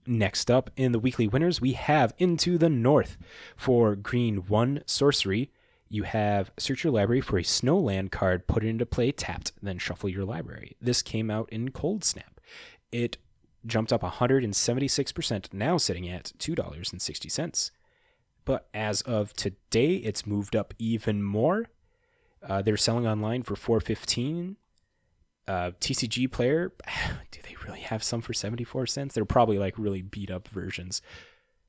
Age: 20-39